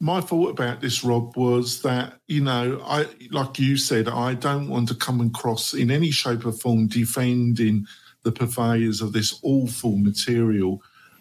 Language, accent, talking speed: English, British, 165 wpm